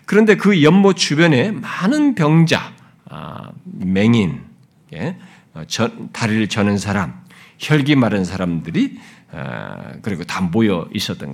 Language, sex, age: Korean, male, 50-69